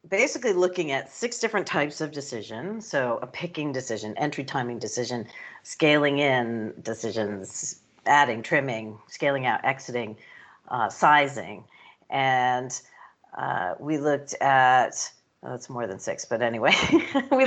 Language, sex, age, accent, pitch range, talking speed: English, female, 50-69, American, 130-185 Hz, 125 wpm